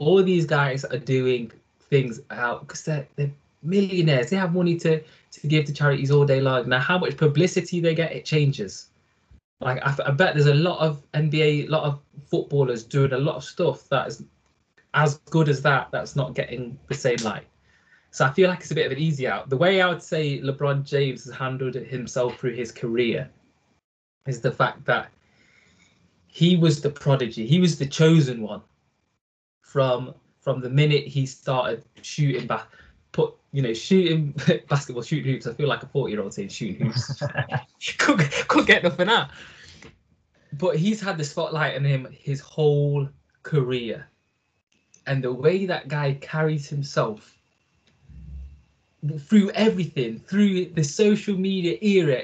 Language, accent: English, British